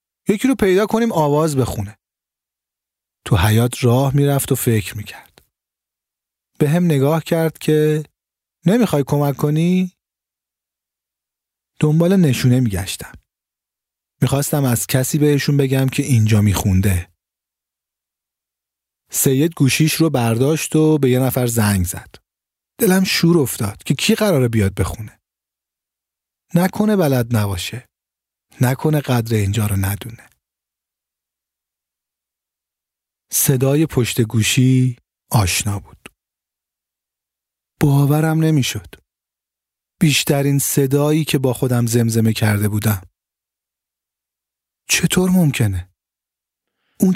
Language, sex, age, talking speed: Persian, male, 40-59, 105 wpm